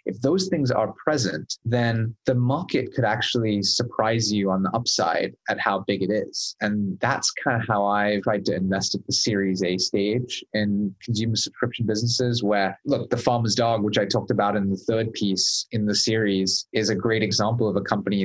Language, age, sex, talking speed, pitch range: English, 20-39, male, 200 wpm, 100-125 Hz